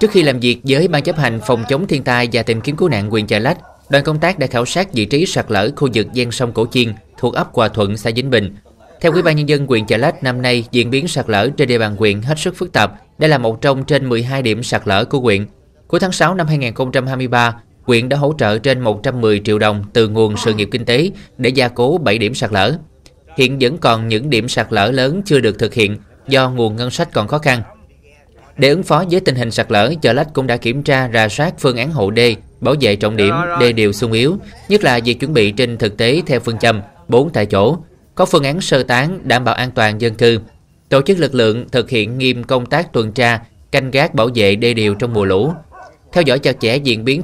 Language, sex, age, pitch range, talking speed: Vietnamese, male, 20-39, 110-140 Hz, 255 wpm